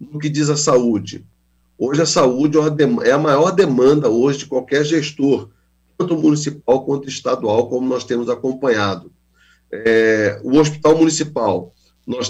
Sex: male